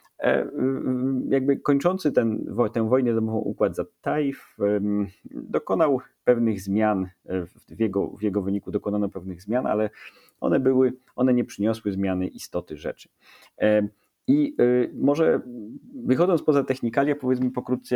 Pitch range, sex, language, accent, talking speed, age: 95-120 Hz, male, English, Polish, 125 wpm, 30-49